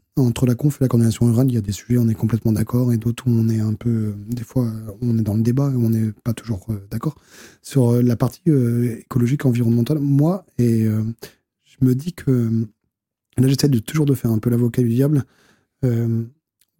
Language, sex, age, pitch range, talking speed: French, male, 20-39, 115-145 Hz, 220 wpm